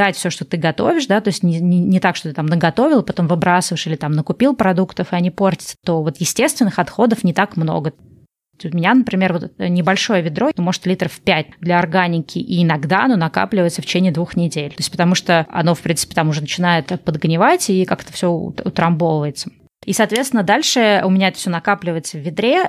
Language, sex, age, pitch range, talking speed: Russian, female, 20-39, 170-200 Hz, 200 wpm